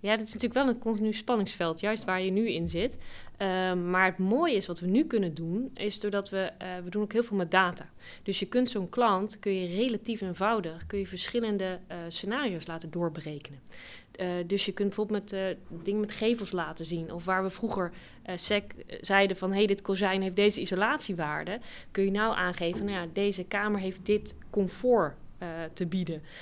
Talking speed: 200 wpm